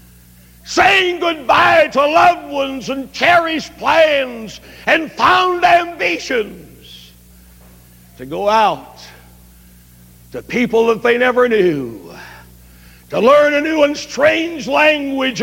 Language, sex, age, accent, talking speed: English, male, 60-79, American, 105 wpm